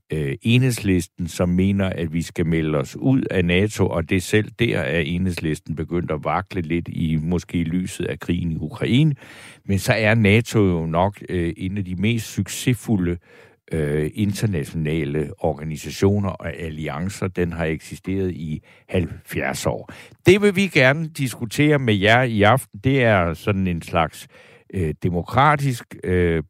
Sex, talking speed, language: male, 160 wpm, Danish